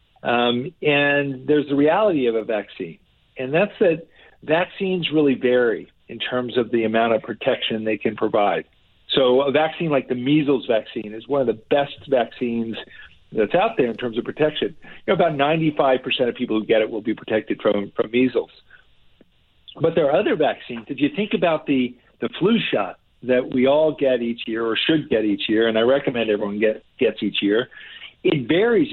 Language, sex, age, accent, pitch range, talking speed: English, male, 50-69, American, 120-150 Hz, 195 wpm